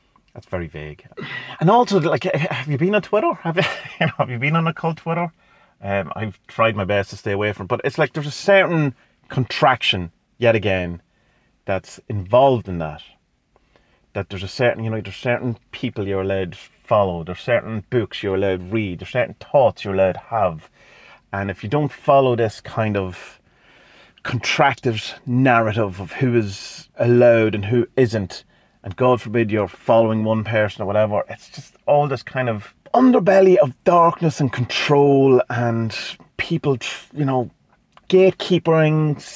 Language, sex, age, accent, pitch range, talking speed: English, male, 30-49, British, 100-140 Hz, 175 wpm